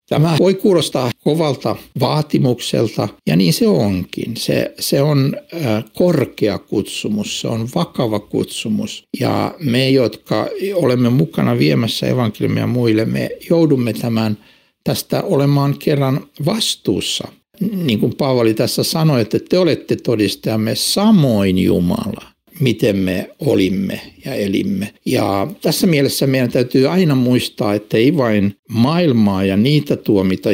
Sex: male